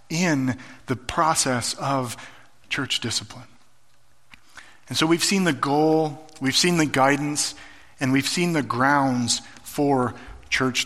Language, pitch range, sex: English, 130-175 Hz, male